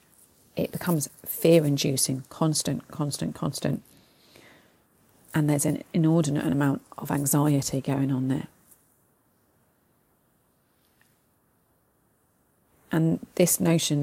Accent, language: British, English